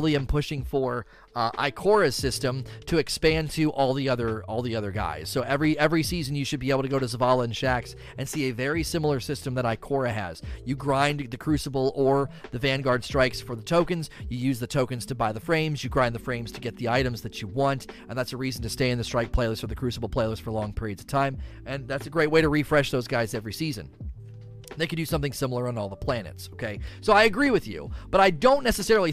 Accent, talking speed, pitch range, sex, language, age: American, 245 wpm, 120-145 Hz, male, English, 30-49